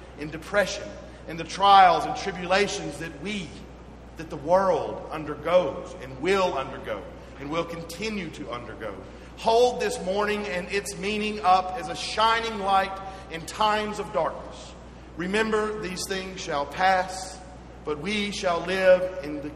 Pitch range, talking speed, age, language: 150-200 Hz, 145 wpm, 40-59, English